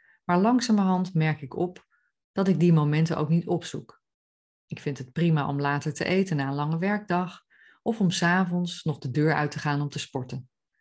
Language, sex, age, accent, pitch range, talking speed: Dutch, female, 30-49, Dutch, 145-175 Hz, 200 wpm